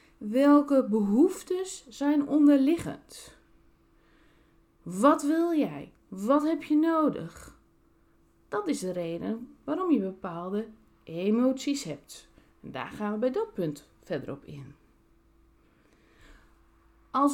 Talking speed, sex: 105 wpm, female